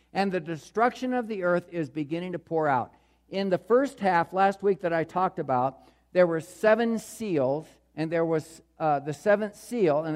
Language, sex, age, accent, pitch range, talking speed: English, male, 50-69, American, 155-210 Hz, 195 wpm